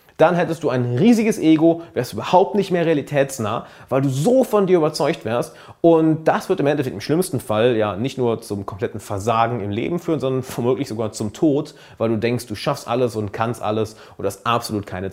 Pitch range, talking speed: 120-165 Hz, 215 wpm